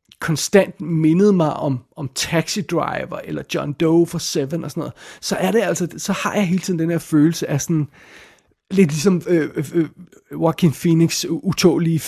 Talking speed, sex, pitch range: 180 wpm, male, 150-180 Hz